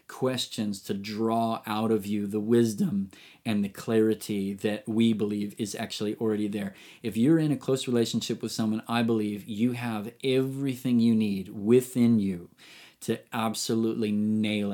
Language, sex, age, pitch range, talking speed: English, male, 30-49, 105-120 Hz, 155 wpm